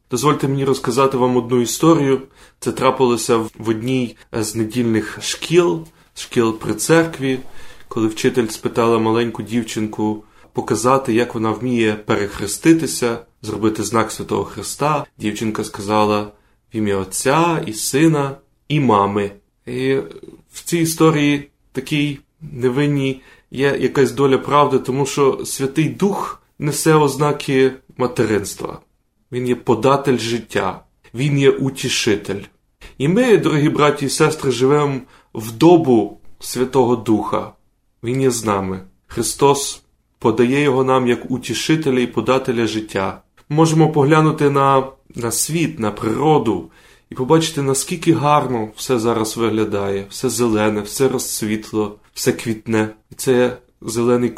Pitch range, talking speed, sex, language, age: 110-140 Hz, 125 wpm, male, Ukrainian, 20-39